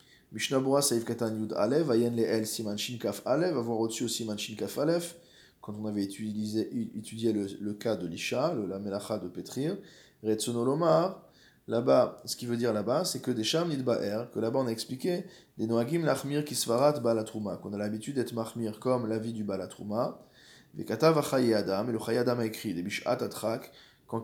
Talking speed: 195 wpm